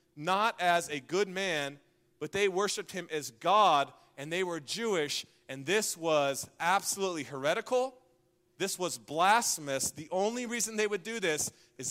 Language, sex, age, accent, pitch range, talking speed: English, male, 30-49, American, 140-190 Hz, 155 wpm